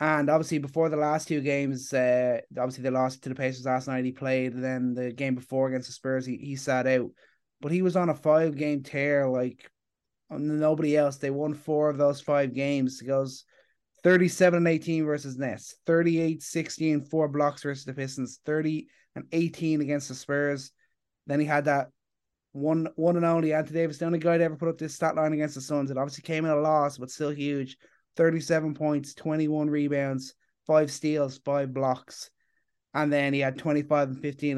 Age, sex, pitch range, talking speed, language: 20-39, male, 135-160 Hz, 200 wpm, English